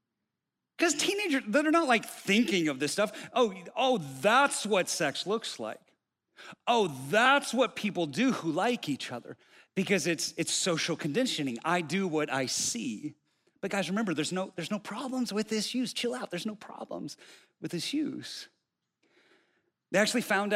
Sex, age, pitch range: male, 40-59, 165-245 Hz